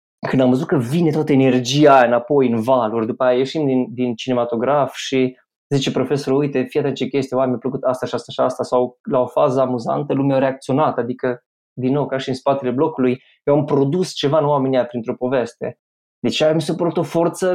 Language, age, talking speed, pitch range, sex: Romanian, 20-39, 215 wpm, 125-160 Hz, male